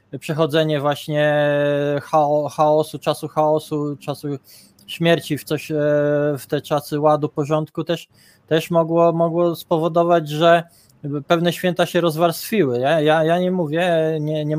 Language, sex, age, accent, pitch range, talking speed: Polish, male, 20-39, native, 140-160 Hz, 125 wpm